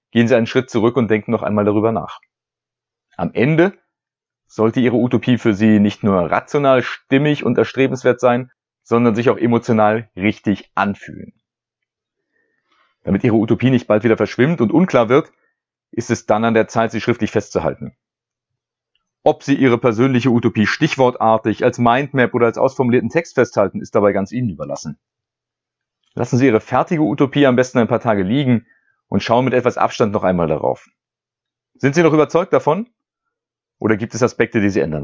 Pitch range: 110-130 Hz